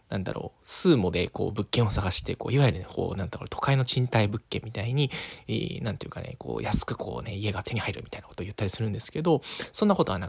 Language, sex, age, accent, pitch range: Japanese, male, 20-39, native, 105-145 Hz